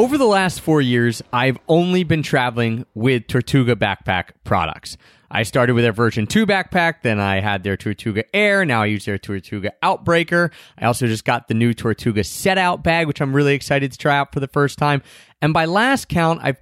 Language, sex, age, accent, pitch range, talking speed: English, male, 30-49, American, 120-180 Hz, 205 wpm